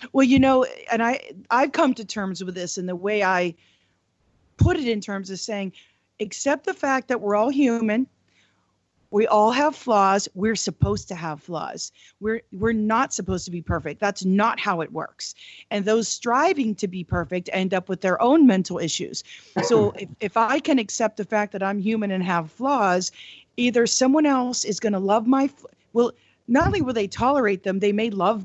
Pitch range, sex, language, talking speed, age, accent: 190-235 Hz, female, English, 200 wpm, 40-59, American